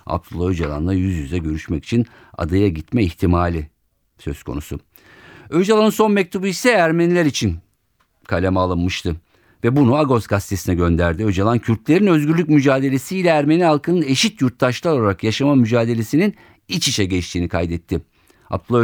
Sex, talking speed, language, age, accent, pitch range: male, 130 wpm, Turkish, 50-69, native, 95-140 Hz